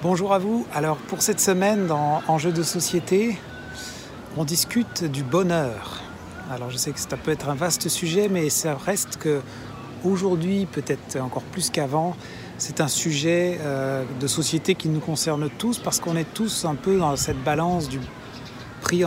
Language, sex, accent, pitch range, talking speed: French, male, French, 135-170 Hz, 170 wpm